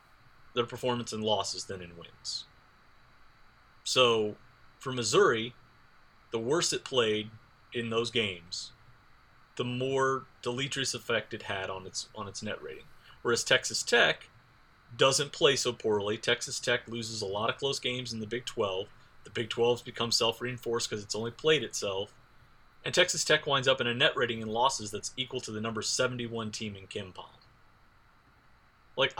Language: English